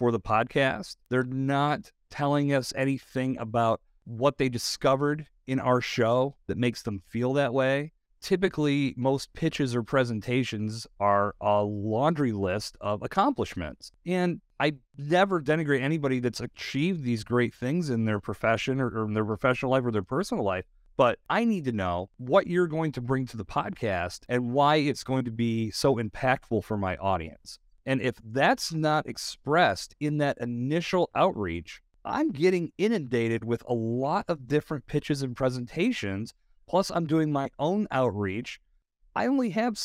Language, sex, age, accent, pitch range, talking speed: English, male, 40-59, American, 115-150 Hz, 160 wpm